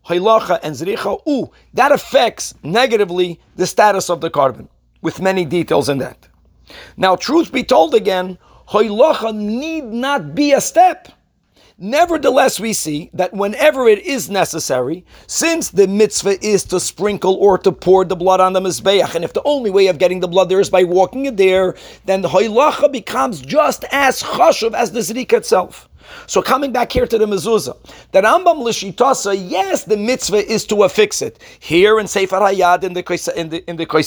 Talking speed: 175 wpm